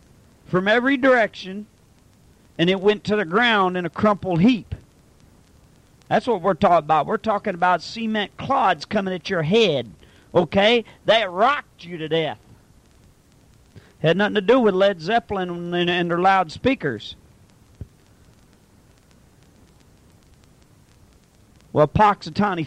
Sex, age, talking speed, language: male, 40-59, 120 wpm, English